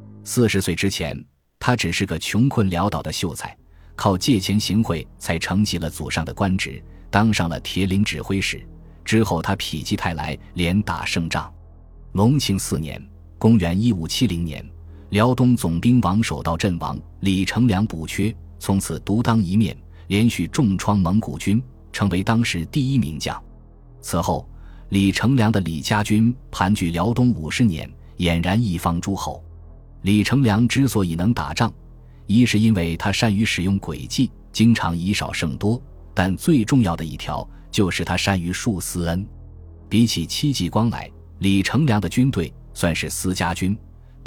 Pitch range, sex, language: 85-110 Hz, male, Chinese